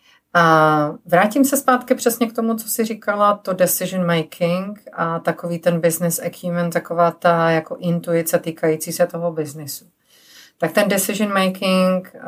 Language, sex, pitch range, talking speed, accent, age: Czech, female, 165-200 Hz, 145 wpm, native, 40-59